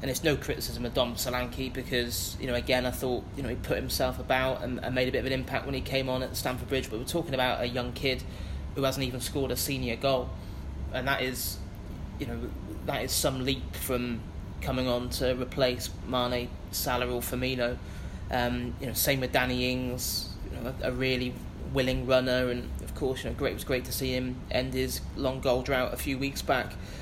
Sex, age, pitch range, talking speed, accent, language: male, 20-39, 105-130 Hz, 220 wpm, British, English